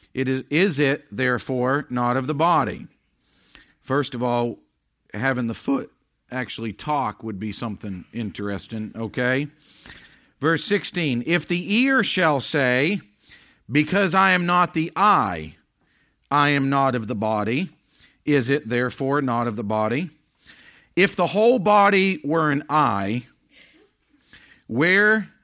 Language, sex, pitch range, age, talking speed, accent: English, male, 125-190 Hz, 50-69, 130 wpm, American